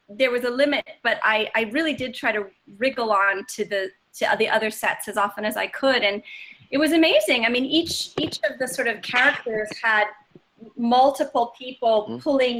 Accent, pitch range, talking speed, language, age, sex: American, 210-260 Hz, 195 wpm, English, 30-49, female